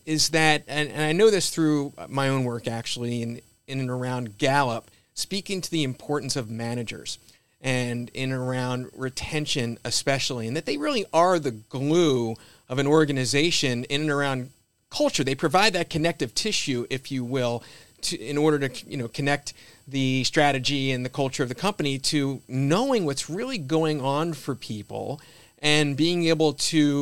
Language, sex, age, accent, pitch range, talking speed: English, male, 40-59, American, 125-155 Hz, 175 wpm